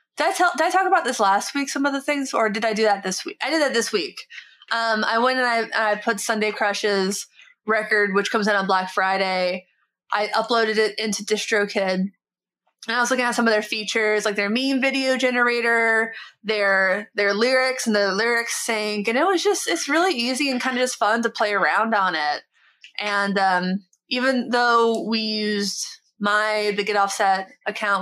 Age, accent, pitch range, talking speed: 20-39, American, 195-235 Hz, 200 wpm